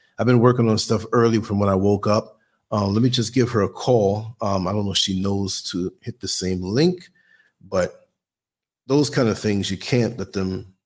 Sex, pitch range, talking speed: male, 95-130 Hz, 220 wpm